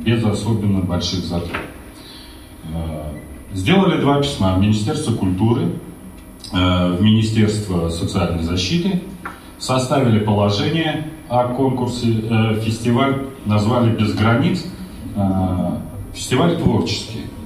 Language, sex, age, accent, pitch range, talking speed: Russian, male, 40-59, native, 95-125 Hz, 85 wpm